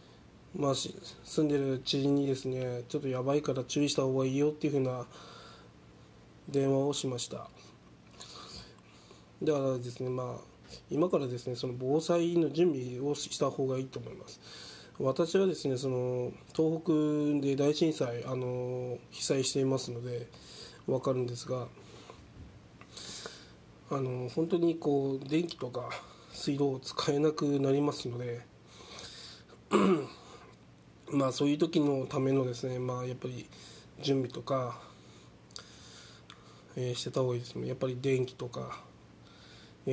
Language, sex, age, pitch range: Japanese, male, 20-39, 125-145 Hz